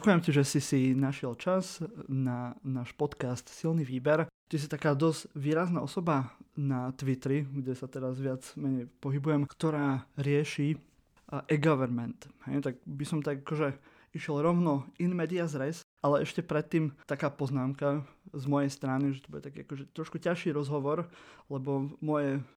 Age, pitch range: 20-39, 130-155 Hz